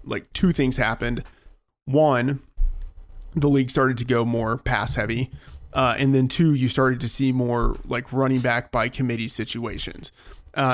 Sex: male